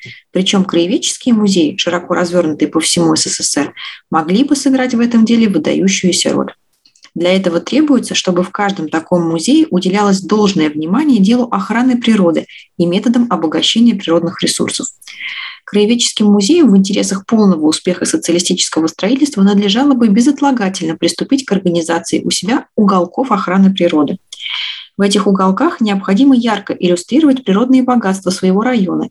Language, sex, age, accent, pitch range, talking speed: Russian, female, 20-39, native, 180-245 Hz, 135 wpm